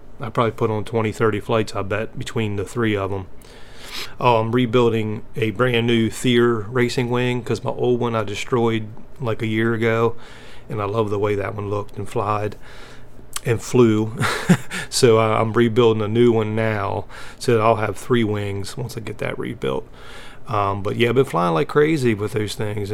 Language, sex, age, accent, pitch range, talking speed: English, male, 30-49, American, 110-125 Hz, 195 wpm